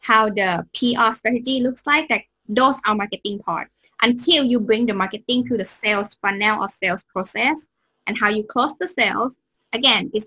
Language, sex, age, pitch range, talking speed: English, female, 10-29, 200-250 Hz, 180 wpm